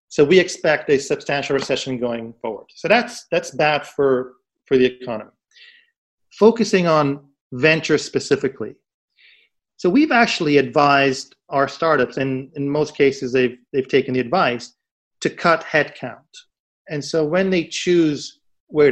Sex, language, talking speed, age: male, English, 140 wpm, 40-59